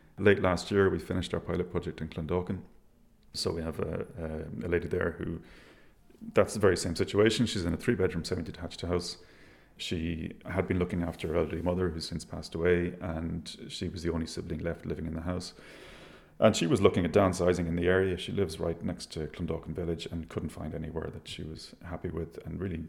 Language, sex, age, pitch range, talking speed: English, male, 30-49, 85-95 Hz, 205 wpm